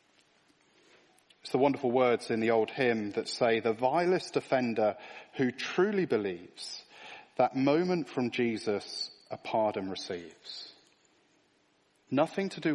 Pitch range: 130-185 Hz